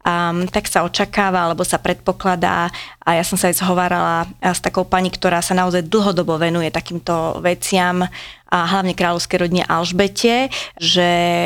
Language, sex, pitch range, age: Slovak, female, 175-195 Hz, 30-49